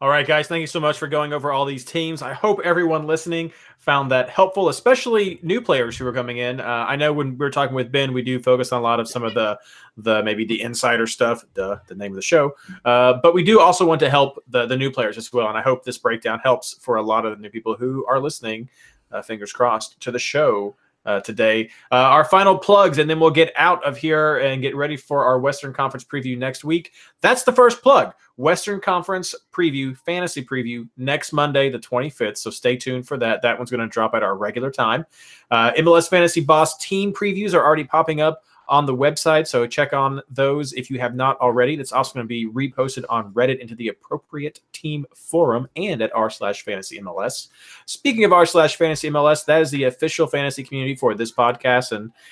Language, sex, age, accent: English, male, 30-49, American